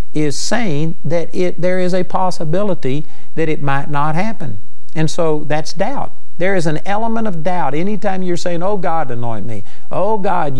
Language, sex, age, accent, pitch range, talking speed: English, male, 50-69, American, 135-195 Hz, 180 wpm